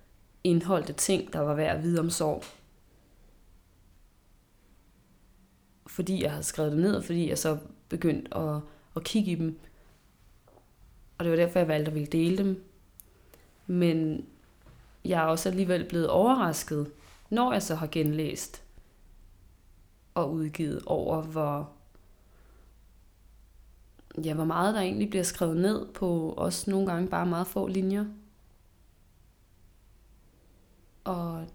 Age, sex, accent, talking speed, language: 20-39, female, Danish, 130 wpm, English